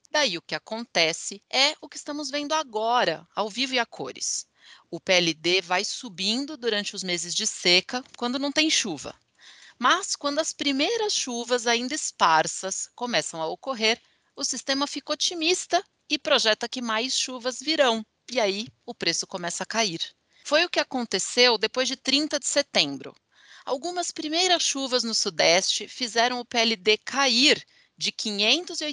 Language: English